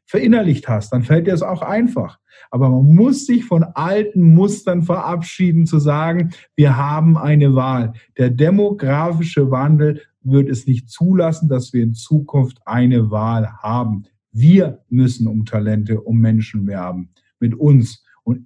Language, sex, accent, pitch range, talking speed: German, male, German, 110-145 Hz, 150 wpm